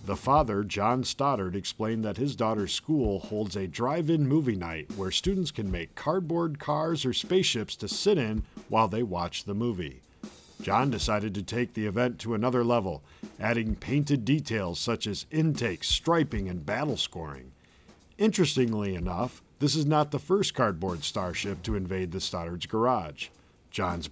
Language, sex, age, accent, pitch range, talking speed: English, male, 50-69, American, 100-135 Hz, 160 wpm